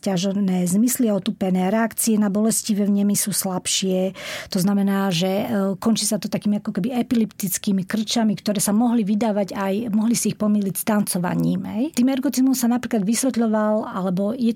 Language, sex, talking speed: Slovak, female, 155 wpm